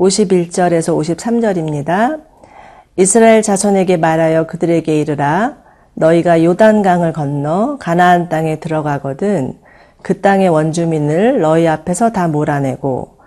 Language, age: Korean, 40-59